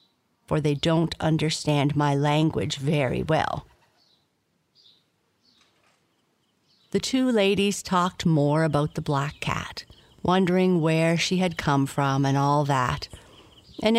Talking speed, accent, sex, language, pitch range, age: 115 wpm, American, female, English, 140-170 Hz, 50-69